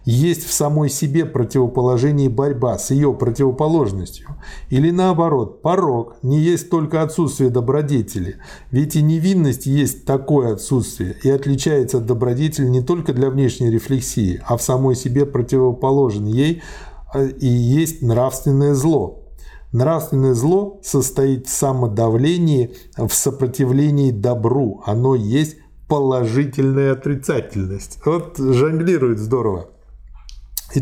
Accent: native